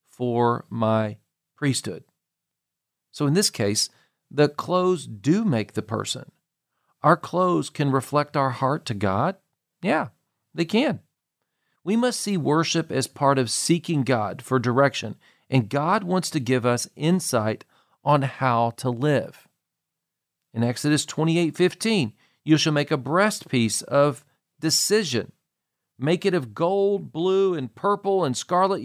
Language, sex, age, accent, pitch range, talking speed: English, male, 40-59, American, 125-170 Hz, 140 wpm